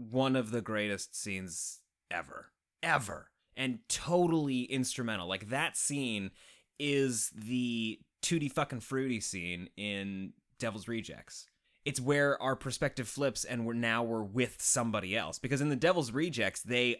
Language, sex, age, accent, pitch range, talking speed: English, male, 30-49, American, 110-145 Hz, 140 wpm